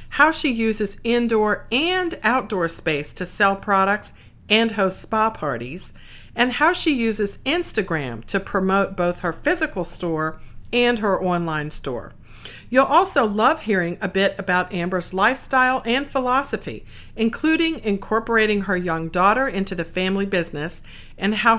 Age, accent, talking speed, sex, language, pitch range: 50-69, American, 140 wpm, female, English, 175-245 Hz